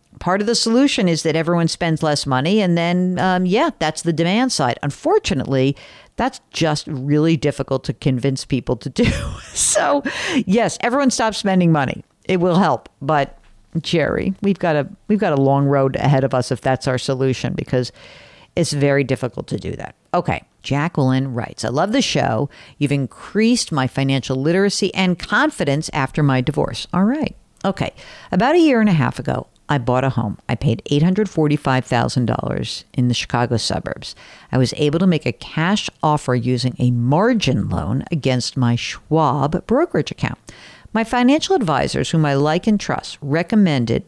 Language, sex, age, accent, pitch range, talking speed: English, female, 50-69, American, 130-180 Hz, 165 wpm